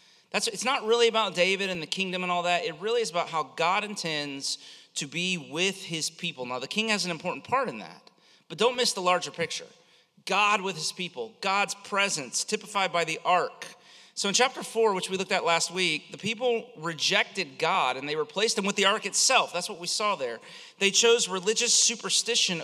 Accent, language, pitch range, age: American, English, 155-220 Hz, 30-49